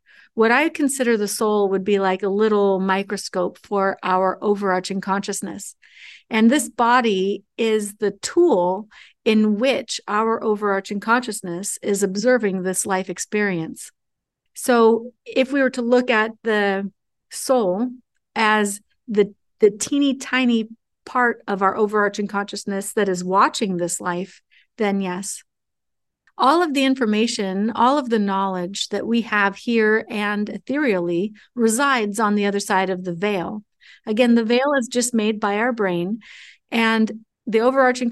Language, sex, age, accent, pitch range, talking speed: English, female, 50-69, American, 200-240 Hz, 145 wpm